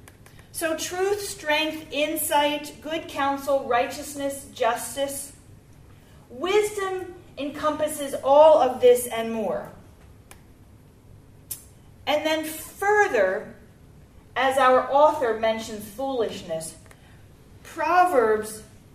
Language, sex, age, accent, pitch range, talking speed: English, female, 40-59, American, 225-310 Hz, 75 wpm